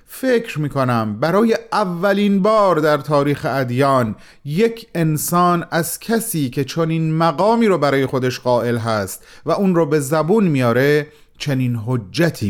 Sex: male